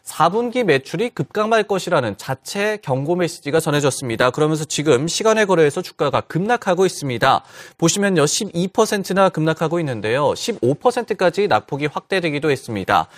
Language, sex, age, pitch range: Korean, male, 30-49, 140-195 Hz